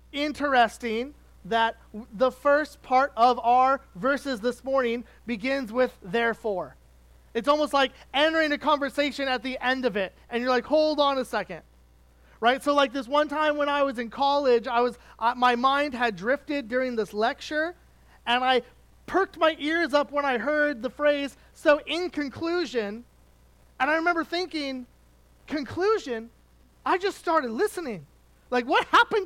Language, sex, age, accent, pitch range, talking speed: English, male, 30-49, American, 240-305 Hz, 160 wpm